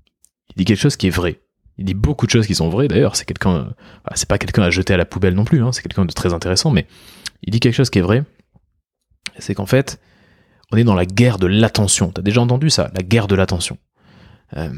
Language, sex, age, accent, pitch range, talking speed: French, male, 20-39, French, 90-115 Hz, 245 wpm